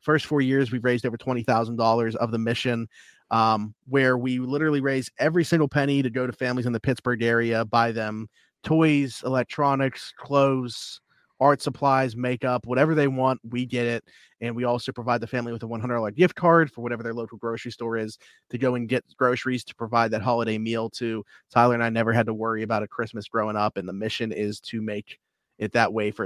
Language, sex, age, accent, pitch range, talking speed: English, male, 30-49, American, 115-130 Hz, 210 wpm